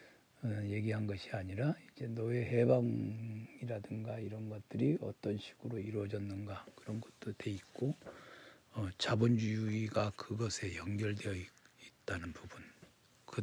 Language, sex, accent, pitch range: Korean, male, native, 100-125 Hz